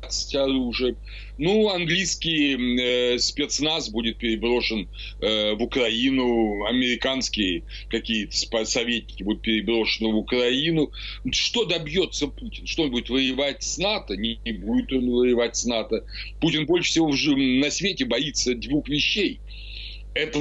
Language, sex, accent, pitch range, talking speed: Ukrainian, male, native, 110-150 Hz, 120 wpm